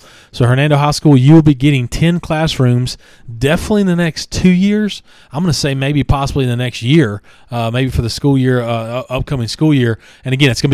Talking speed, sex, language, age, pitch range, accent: 220 wpm, male, English, 40-59, 125-145 Hz, American